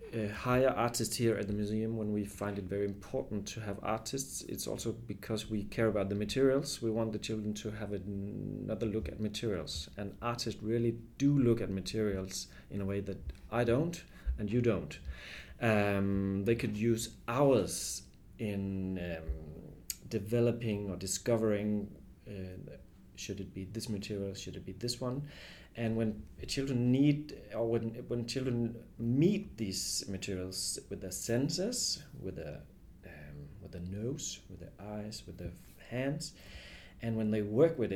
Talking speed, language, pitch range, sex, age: 160 wpm, English, 95-120 Hz, male, 30-49